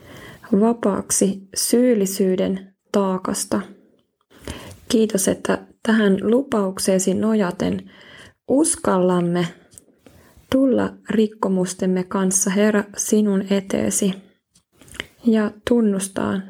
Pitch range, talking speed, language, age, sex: 190-215 Hz, 60 wpm, Finnish, 20-39, female